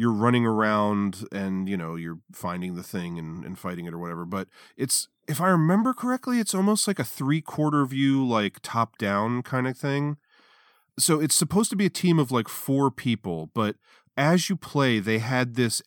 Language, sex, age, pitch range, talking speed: English, male, 30-49, 105-135 Hz, 195 wpm